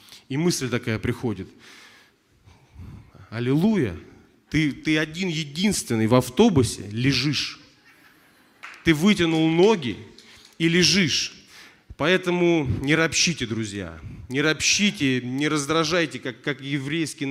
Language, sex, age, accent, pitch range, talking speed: Russian, male, 30-49, native, 125-165 Hz, 95 wpm